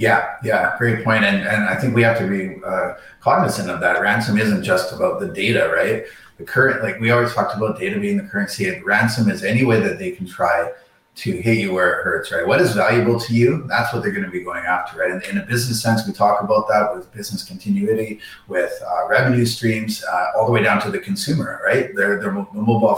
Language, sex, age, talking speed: English, male, 30-49, 245 wpm